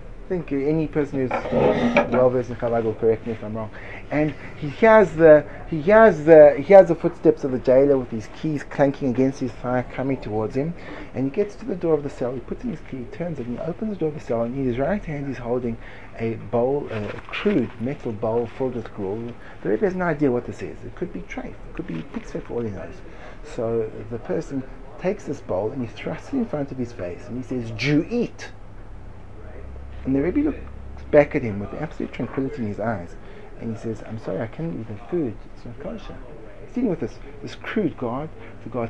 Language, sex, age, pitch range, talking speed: English, male, 30-49, 105-145 Hz, 240 wpm